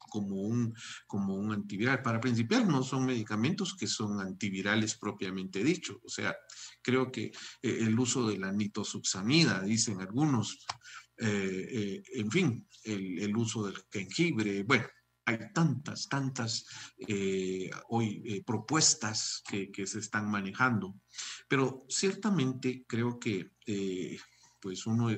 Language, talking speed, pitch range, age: Spanish, 135 wpm, 100-130 Hz, 50-69